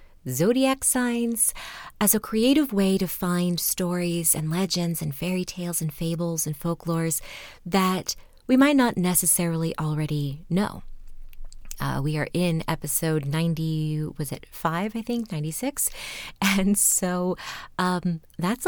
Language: English